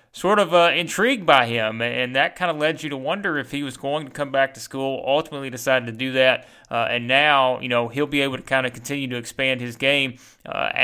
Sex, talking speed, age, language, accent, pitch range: male, 250 wpm, 30-49, English, American, 130-160 Hz